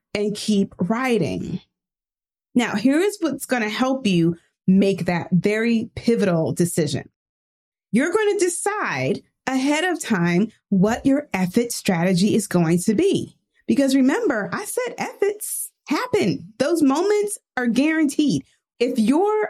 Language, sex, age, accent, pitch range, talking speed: English, female, 30-49, American, 190-265 Hz, 125 wpm